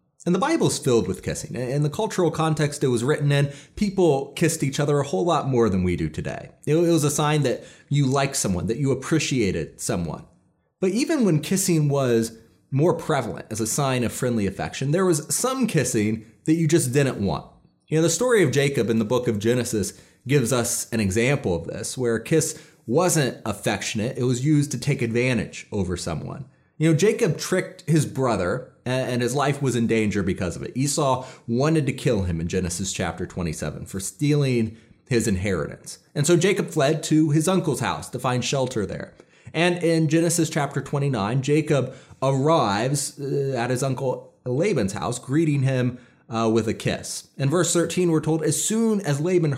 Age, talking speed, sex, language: 30-49, 190 wpm, male, English